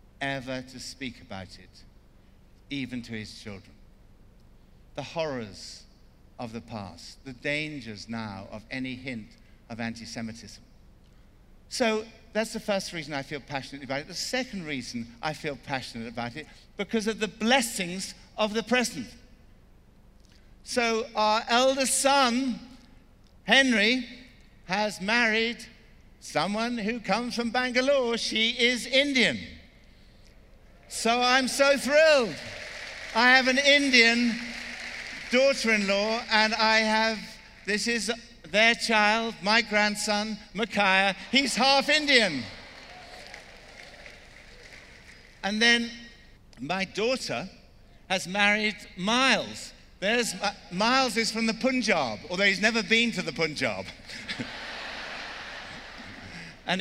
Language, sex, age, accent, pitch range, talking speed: English, male, 60-79, British, 140-235 Hz, 110 wpm